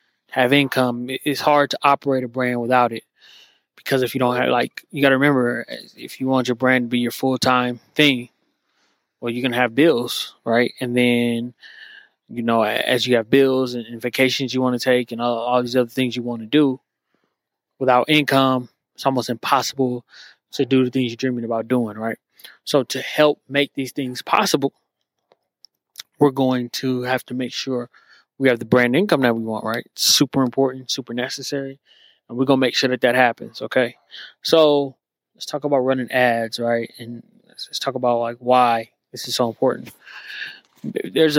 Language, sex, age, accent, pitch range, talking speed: English, male, 20-39, American, 125-135 Hz, 190 wpm